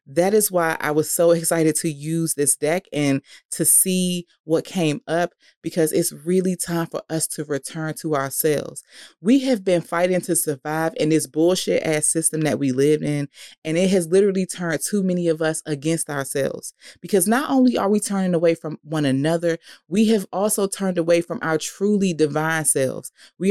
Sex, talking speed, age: female, 190 wpm, 30-49